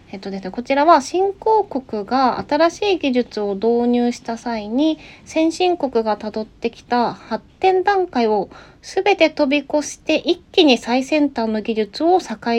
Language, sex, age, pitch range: Japanese, female, 20-39, 195-295 Hz